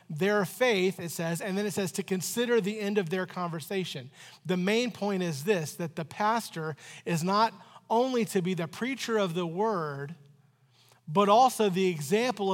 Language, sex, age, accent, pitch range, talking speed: English, male, 40-59, American, 160-210 Hz, 175 wpm